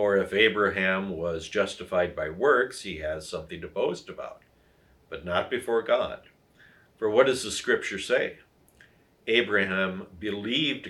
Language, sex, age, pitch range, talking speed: English, male, 60-79, 90-110 Hz, 140 wpm